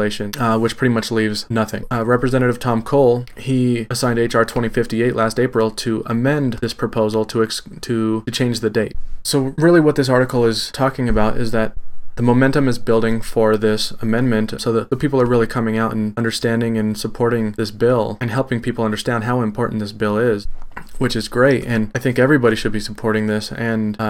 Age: 20-39